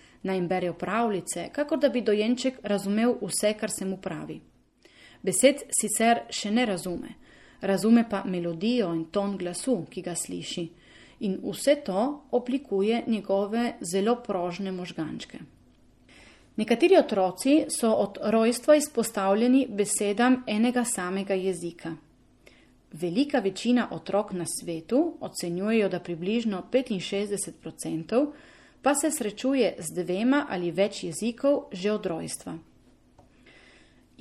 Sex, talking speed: female, 115 wpm